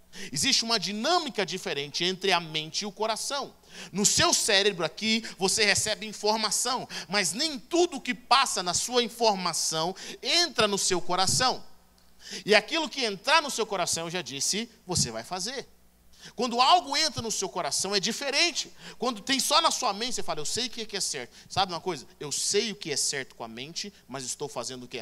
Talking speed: 195 wpm